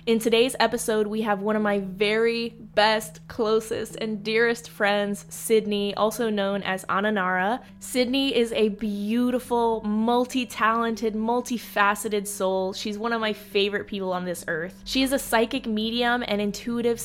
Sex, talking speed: female, 150 wpm